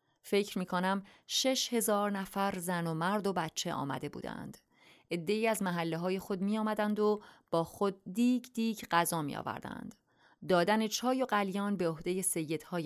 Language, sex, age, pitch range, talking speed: English, female, 30-49, 175-220 Hz, 165 wpm